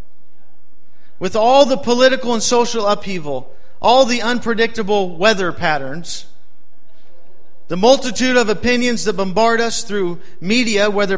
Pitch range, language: 190-250 Hz, English